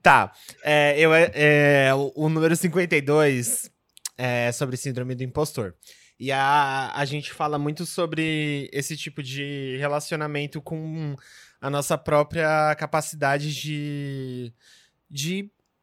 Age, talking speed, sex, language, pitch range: 20-39, 105 wpm, male, Portuguese, 120-155 Hz